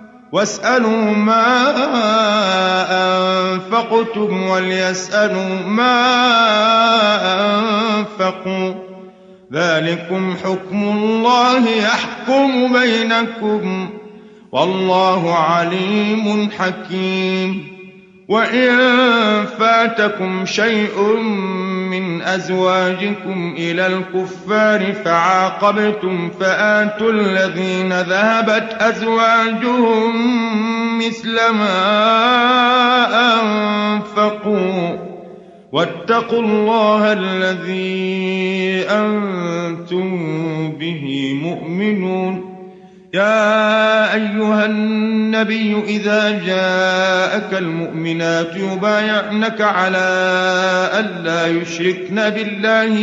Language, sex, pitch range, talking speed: Arabic, male, 185-220 Hz, 50 wpm